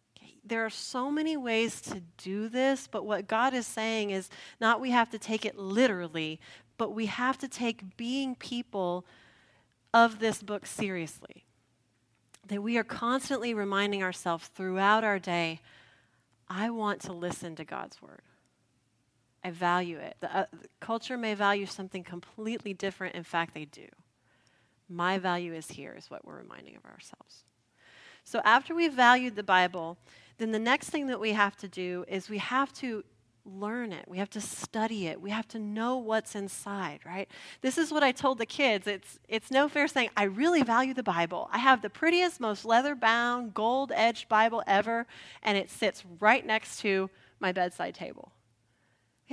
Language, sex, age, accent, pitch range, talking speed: English, female, 30-49, American, 180-250 Hz, 175 wpm